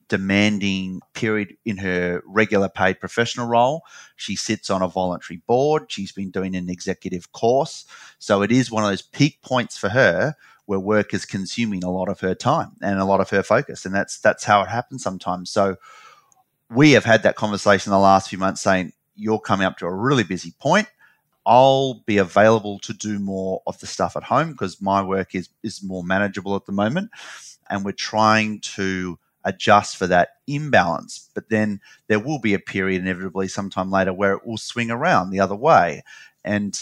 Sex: male